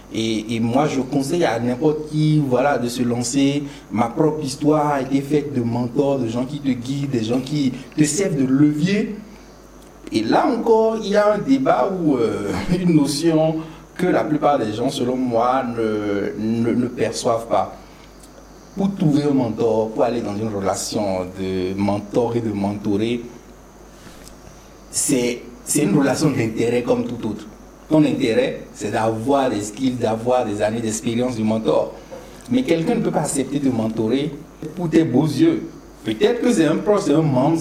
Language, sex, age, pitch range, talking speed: French, male, 60-79, 120-185 Hz, 175 wpm